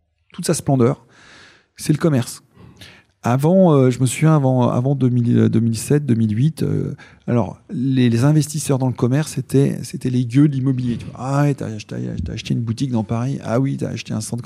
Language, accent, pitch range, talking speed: French, French, 115-150 Hz, 185 wpm